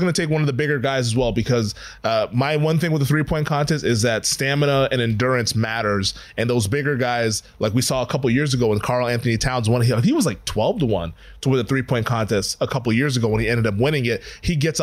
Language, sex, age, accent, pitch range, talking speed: English, male, 20-39, American, 120-155 Hz, 265 wpm